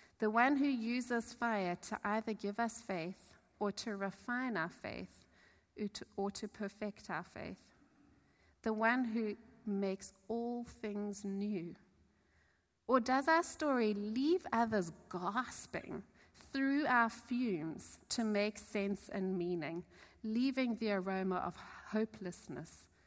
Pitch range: 165-220 Hz